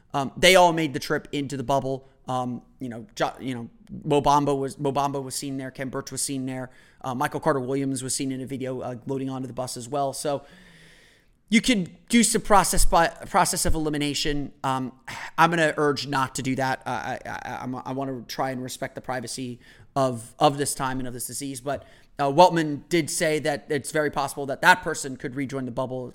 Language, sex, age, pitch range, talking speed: English, male, 30-49, 130-155 Hz, 225 wpm